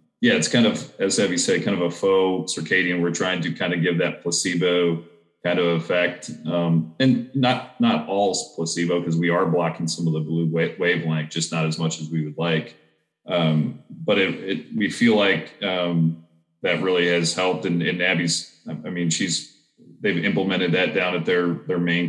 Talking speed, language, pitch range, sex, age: 195 wpm, English, 80-90 Hz, male, 30-49